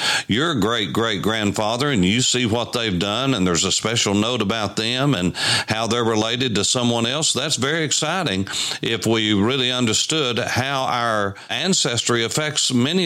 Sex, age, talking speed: male, 50-69, 165 wpm